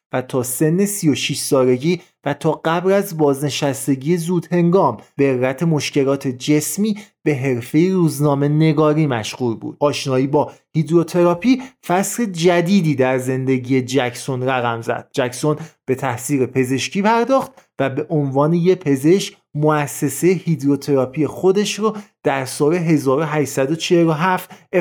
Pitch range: 140-180 Hz